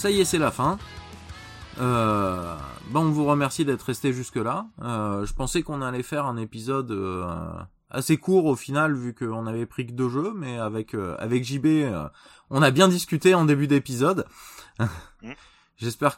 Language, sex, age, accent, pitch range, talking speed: French, male, 20-39, French, 100-135 Hz, 180 wpm